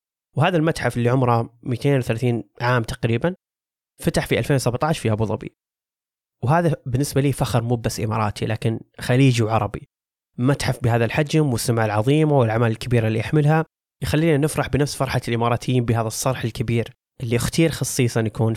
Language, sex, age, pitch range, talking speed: Arabic, male, 20-39, 115-145 Hz, 140 wpm